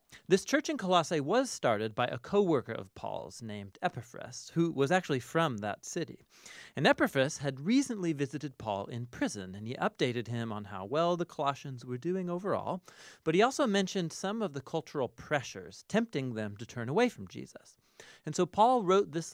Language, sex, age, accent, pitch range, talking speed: English, male, 30-49, American, 120-170 Hz, 185 wpm